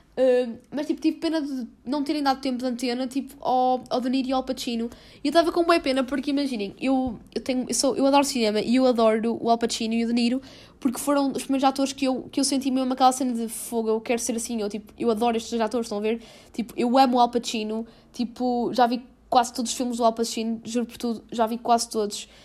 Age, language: 10-29, Portuguese